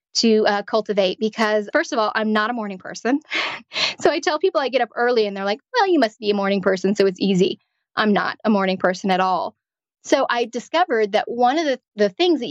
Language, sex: English, female